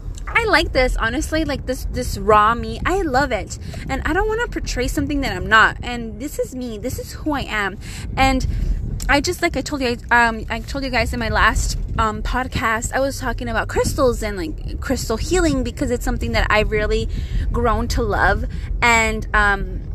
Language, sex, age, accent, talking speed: English, female, 20-39, American, 210 wpm